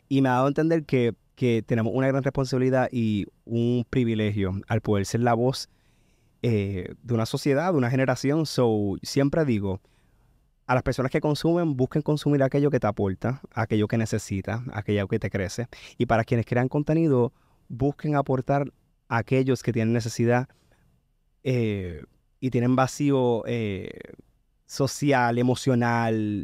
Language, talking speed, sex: Spanish, 150 wpm, male